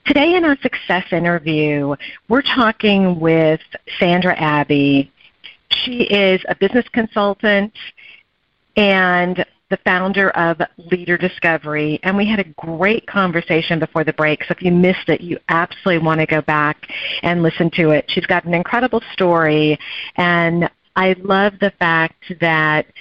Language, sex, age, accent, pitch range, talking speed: English, female, 40-59, American, 160-205 Hz, 145 wpm